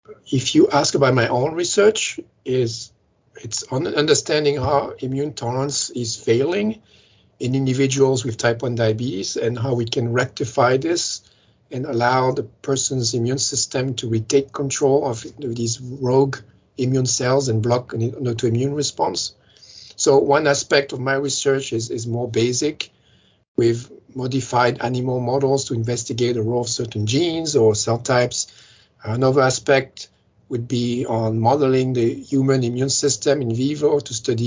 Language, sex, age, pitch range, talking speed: English, male, 50-69, 115-135 Hz, 145 wpm